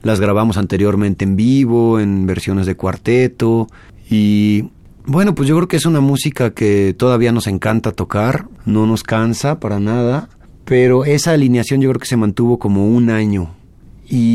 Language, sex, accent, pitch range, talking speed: Spanish, male, Mexican, 100-125 Hz, 165 wpm